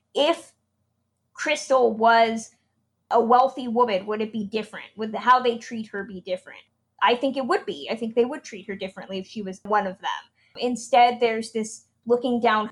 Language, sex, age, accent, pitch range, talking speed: English, female, 20-39, American, 210-255 Hz, 190 wpm